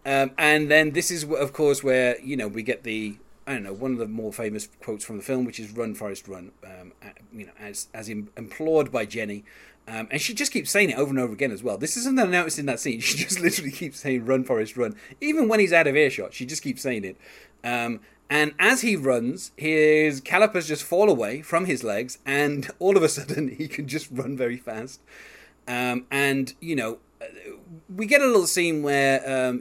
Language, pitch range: English, 110-155 Hz